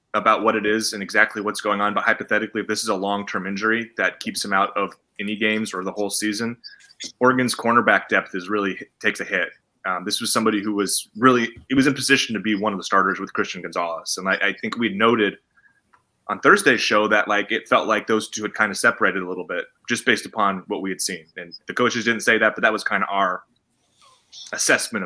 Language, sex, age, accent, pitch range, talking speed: English, male, 20-39, American, 105-120 Hz, 240 wpm